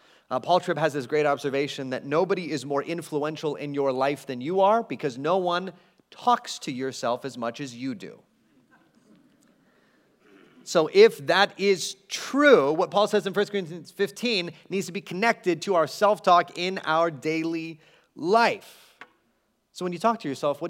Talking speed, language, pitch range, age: 170 wpm, English, 135-185 Hz, 30-49